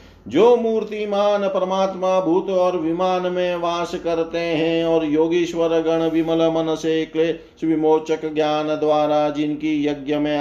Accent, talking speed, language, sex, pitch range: native, 125 wpm, Hindi, male, 150-175 Hz